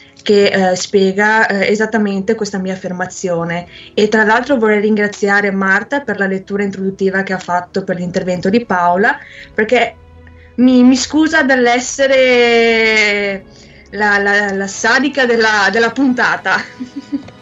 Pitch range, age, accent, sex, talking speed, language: 195-235 Hz, 20-39, native, female, 130 wpm, Italian